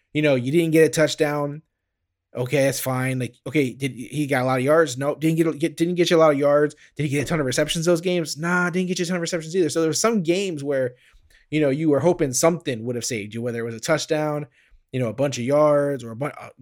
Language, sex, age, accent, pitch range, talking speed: English, male, 20-39, American, 125-165 Hz, 290 wpm